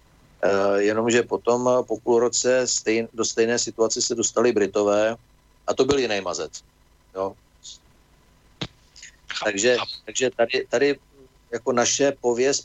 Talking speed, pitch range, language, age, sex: 115 wpm, 105-120 Hz, Slovak, 50-69, male